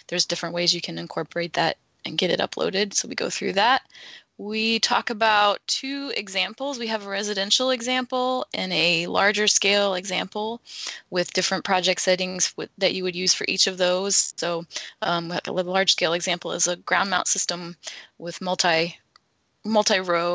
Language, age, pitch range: English, 20-39, 180-230 Hz